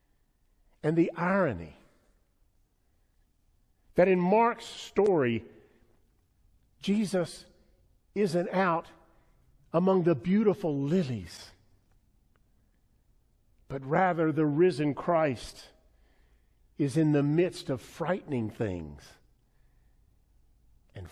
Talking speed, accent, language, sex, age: 75 wpm, American, English, male, 50-69